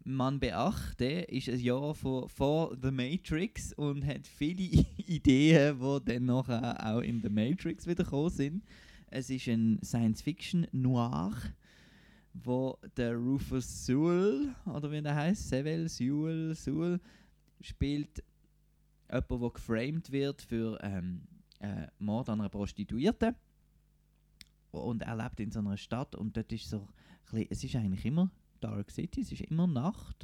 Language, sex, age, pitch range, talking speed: German, male, 20-39, 115-160 Hz, 145 wpm